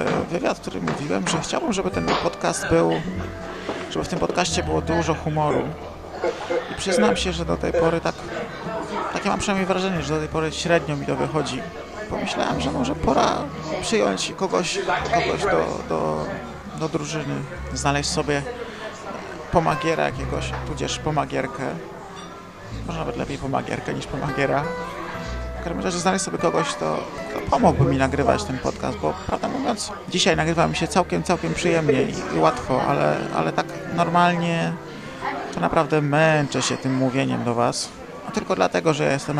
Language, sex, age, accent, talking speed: Polish, male, 30-49, native, 155 wpm